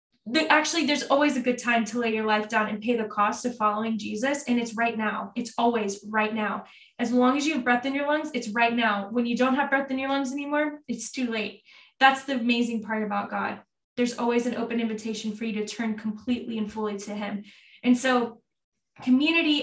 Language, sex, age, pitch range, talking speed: English, female, 10-29, 220-250 Hz, 225 wpm